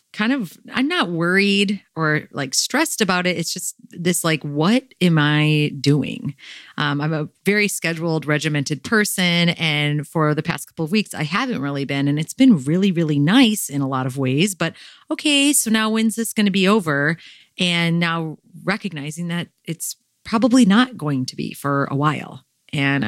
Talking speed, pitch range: 185 wpm, 145-190 Hz